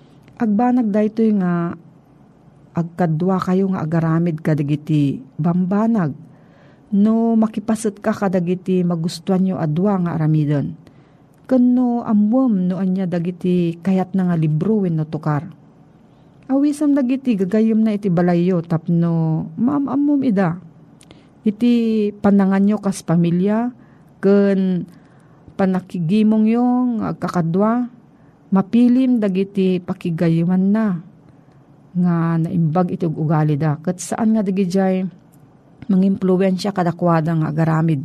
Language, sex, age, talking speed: Filipino, female, 50-69, 105 wpm